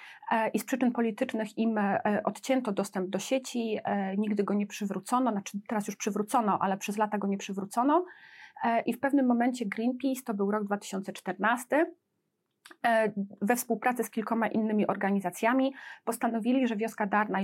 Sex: female